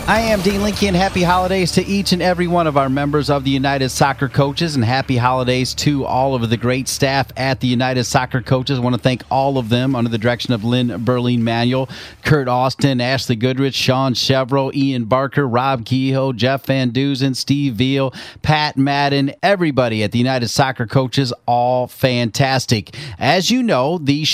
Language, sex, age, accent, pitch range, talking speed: English, male, 40-59, American, 125-160 Hz, 190 wpm